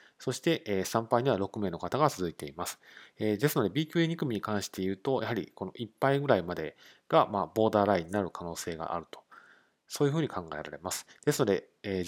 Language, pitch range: Japanese, 95-130 Hz